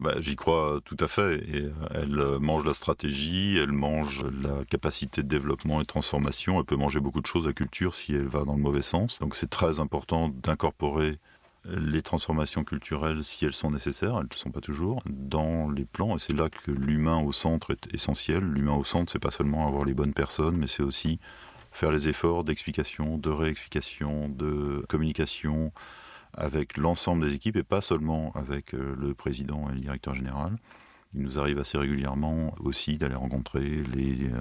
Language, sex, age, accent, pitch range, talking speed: French, male, 40-59, French, 70-80 Hz, 190 wpm